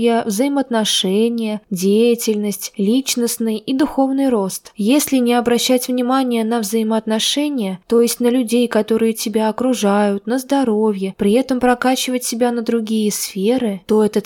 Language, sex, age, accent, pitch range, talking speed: Russian, female, 20-39, native, 210-255 Hz, 125 wpm